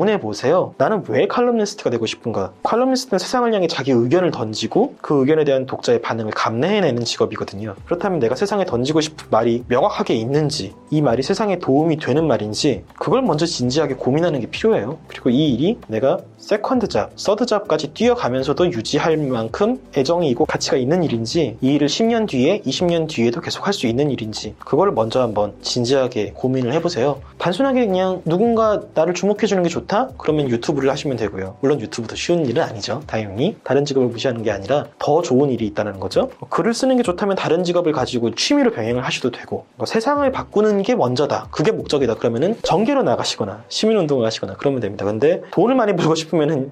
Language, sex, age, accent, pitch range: Korean, male, 20-39, native, 125-190 Hz